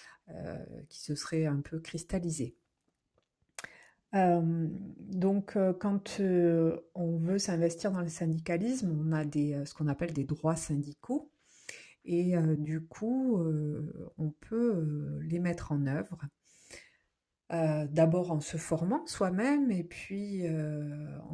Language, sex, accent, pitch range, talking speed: French, female, French, 155-180 Hz, 140 wpm